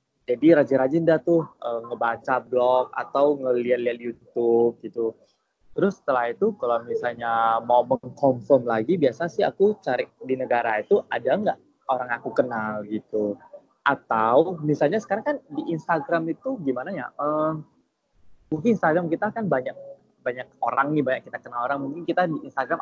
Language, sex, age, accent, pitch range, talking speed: Indonesian, male, 20-39, native, 120-165 Hz, 155 wpm